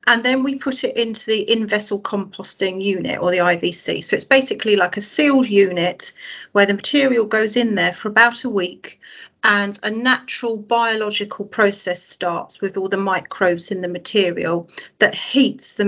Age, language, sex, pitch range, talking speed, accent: 40-59, English, female, 185-225 Hz, 175 wpm, British